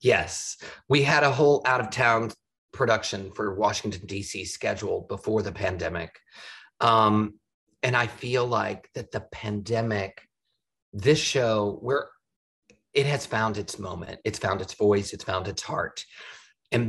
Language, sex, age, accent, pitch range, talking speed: English, male, 40-59, American, 105-130 Hz, 145 wpm